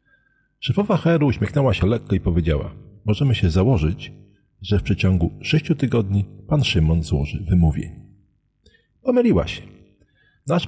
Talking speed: 125 wpm